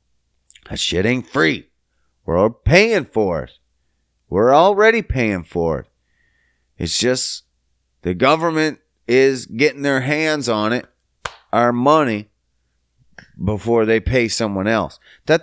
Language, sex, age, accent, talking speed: English, male, 30-49, American, 120 wpm